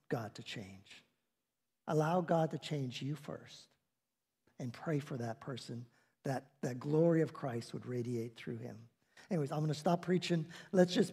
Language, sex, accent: English, male, American